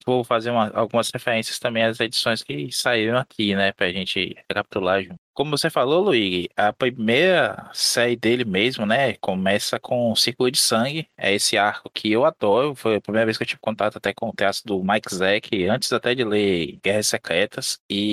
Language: Portuguese